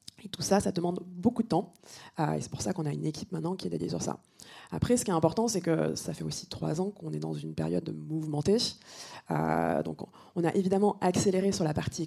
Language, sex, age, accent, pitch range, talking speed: French, female, 20-39, French, 155-195 Hz, 245 wpm